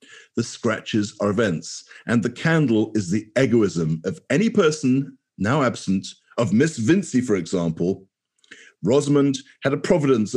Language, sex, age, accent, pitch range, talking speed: English, male, 50-69, British, 110-150 Hz, 140 wpm